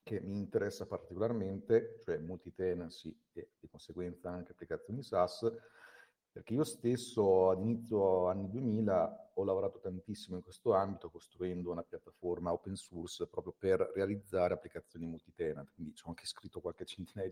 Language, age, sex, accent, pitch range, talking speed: Italian, 40-59, male, native, 90-115 Hz, 140 wpm